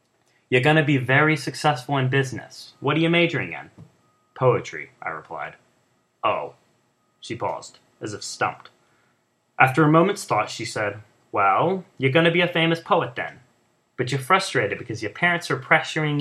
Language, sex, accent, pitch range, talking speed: English, male, American, 120-160 Hz, 165 wpm